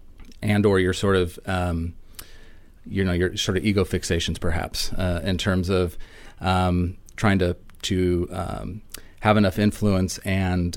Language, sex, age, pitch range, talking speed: English, male, 30-49, 90-105 Hz, 150 wpm